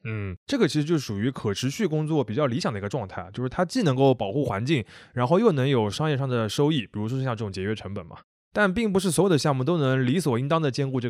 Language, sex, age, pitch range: Chinese, male, 20-39, 110-150 Hz